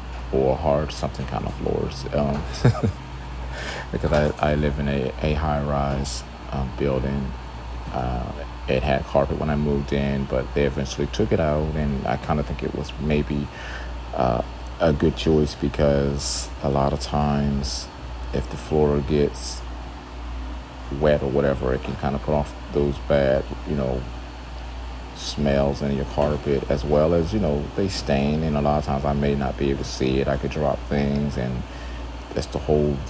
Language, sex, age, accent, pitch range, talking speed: English, male, 40-59, American, 65-75 Hz, 175 wpm